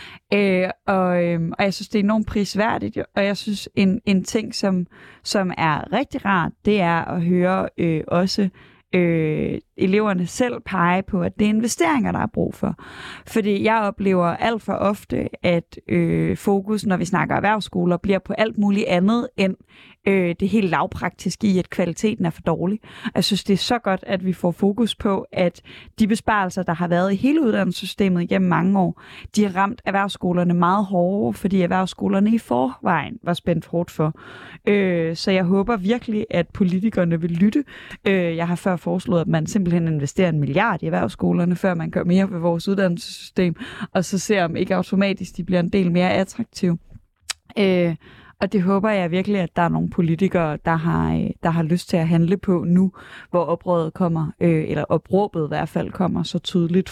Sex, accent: female, native